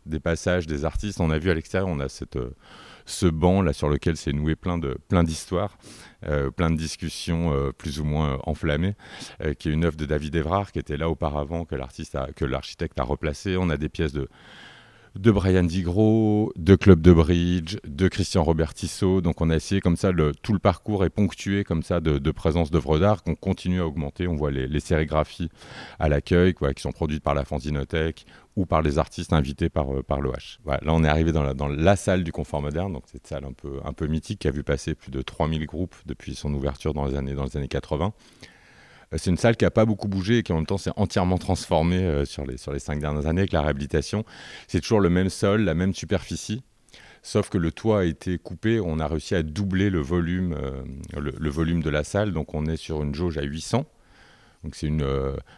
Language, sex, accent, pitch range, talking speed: French, male, French, 75-95 Hz, 230 wpm